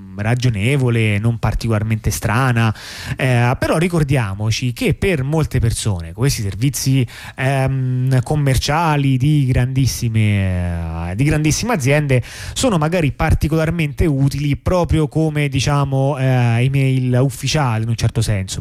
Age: 30-49